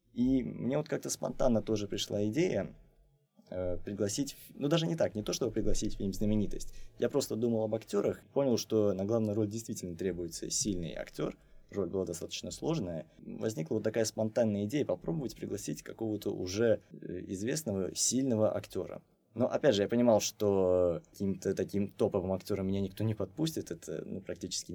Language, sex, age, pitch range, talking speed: Russian, male, 20-39, 95-110 Hz, 160 wpm